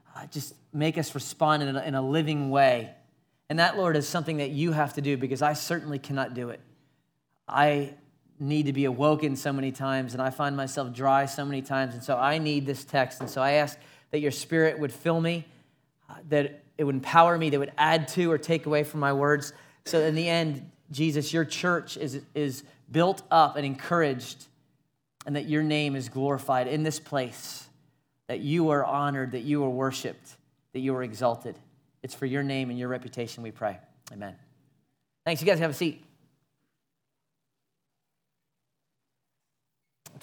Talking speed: 190 wpm